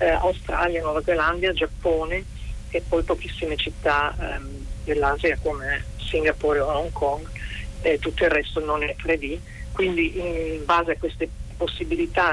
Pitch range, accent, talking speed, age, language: 145-170 Hz, native, 140 wpm, 40-59, Italian